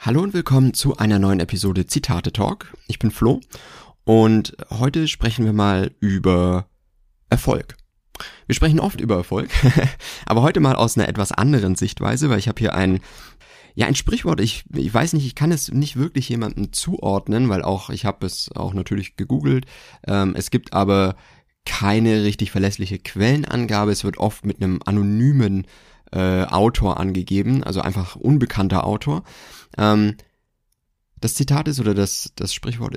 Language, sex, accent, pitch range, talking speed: German, male, German, 100-135 Hz, 155 wpm